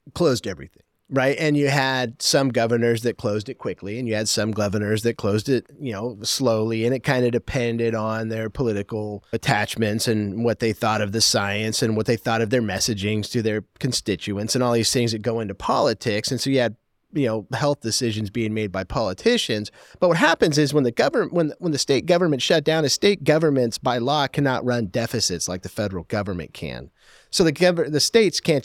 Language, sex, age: English, male, 40-59